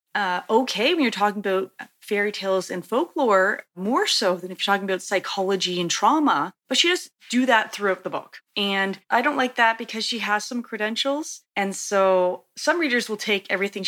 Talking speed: 195 wpm